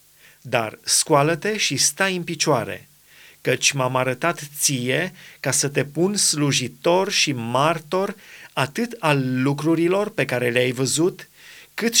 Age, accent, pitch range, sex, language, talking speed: 30-49, native, 135-170 Hz, male, Romanian, 125 wpm